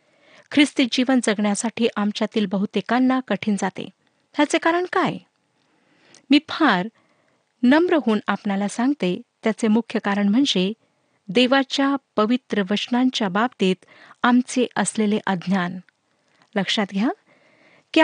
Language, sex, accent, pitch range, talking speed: Marathi, female, native, 205-265 Hz, 100 wpm